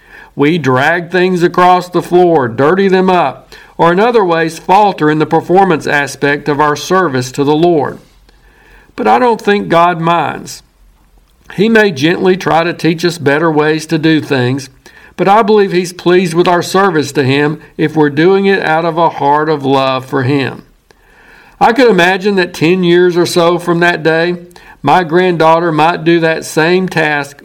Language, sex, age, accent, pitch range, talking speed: English, male, 60-79, American, 145-180 Hz, 180 wpm